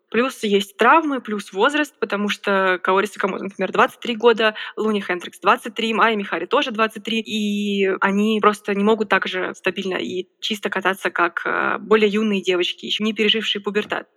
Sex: female